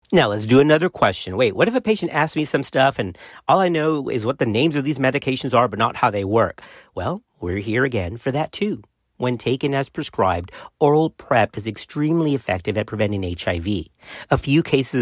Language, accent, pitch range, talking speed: English, American, 105-150 Hz, 210 wpm